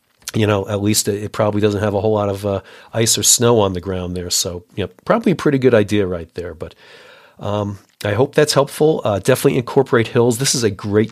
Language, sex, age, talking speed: English, male, 40-59, 235 wpm